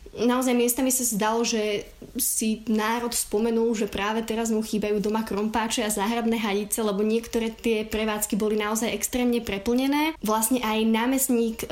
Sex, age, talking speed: female, 20-39, 150 wpm